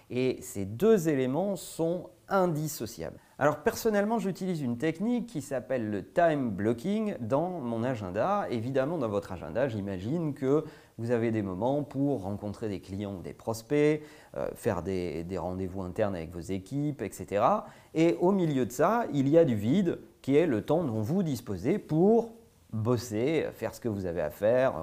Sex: male